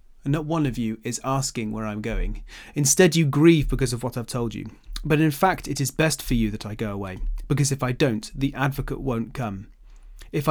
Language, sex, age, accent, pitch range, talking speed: English, male, 30-49, British, 115-145 Hz, 230 wpm